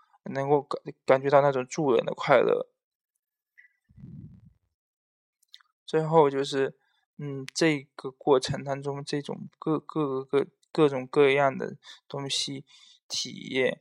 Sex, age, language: male, 20-39, Chinese